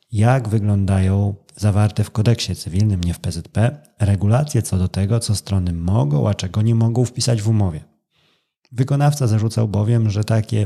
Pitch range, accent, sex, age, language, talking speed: 100-125 Hz, native, male, 30-49, Polish, 160 wpm